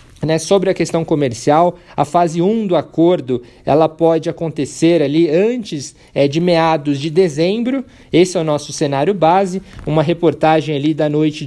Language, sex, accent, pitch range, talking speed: Portuguese, male, Brazilian, 155-185 Hz, 170 wpm